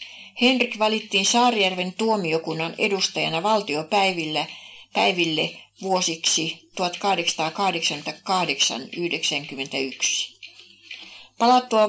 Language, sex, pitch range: Finnish, female, 165-215 Hz